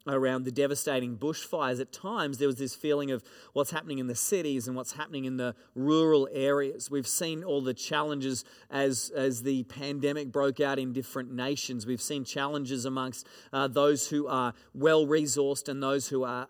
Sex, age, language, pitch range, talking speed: male, 40-59, English, 130-150 Hz, 180 wpm